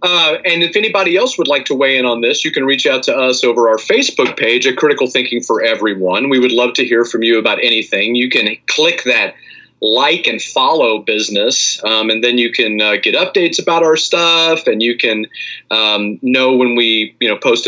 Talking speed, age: 220 wpm, 30-49